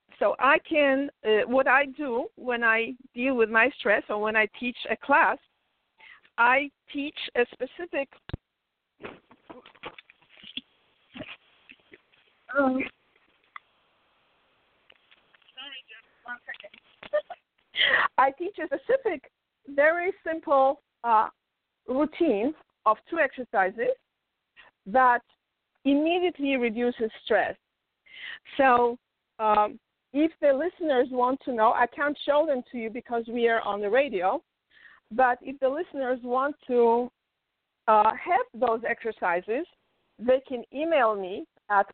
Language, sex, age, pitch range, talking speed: English, female, 50-69, 230-295 Hz, 105 wpm